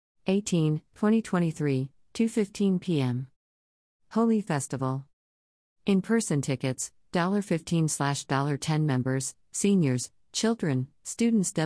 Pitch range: 130-165 Hz